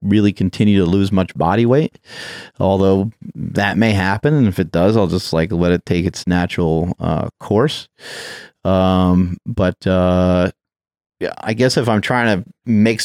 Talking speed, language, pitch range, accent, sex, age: 165 wpm, English, 95-110 Hz, American, male, 30-49